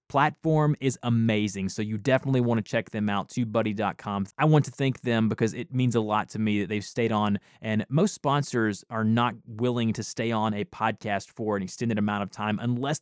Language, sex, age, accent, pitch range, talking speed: English, male, 20-39, American, 115-150 Hz, 210 wpm